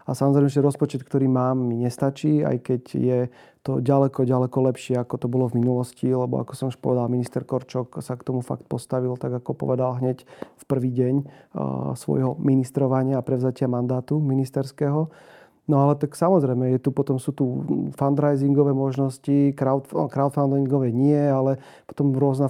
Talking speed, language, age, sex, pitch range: 165 wpm, Slovak, 30-49, male, 125-140 Hz